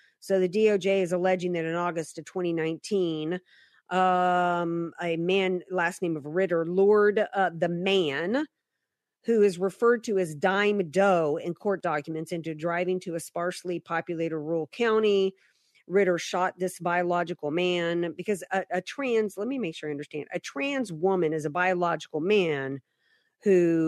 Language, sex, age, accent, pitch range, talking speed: English, female, 40-59, American, 165-205 Hz, 155 wpm